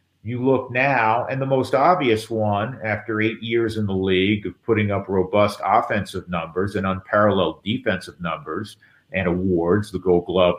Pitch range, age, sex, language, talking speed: 95-110 Hz, 50-69, male, English, 165 wpm